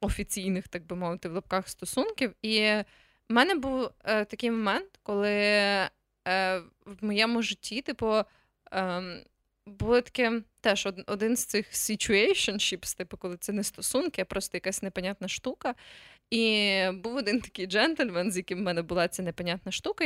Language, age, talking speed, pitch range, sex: Ukrainian, 20-39, 155 wpm, 185-240 Hz, female